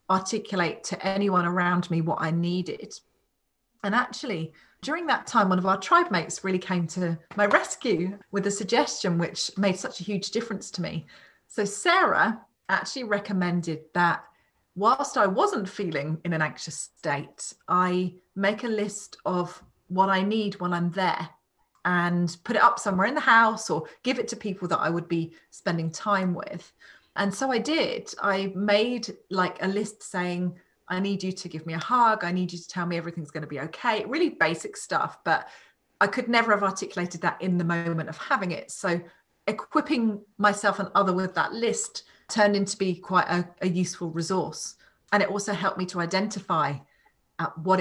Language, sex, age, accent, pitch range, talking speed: English, female, 30-49, British, 175-210 Hz, 185 wpm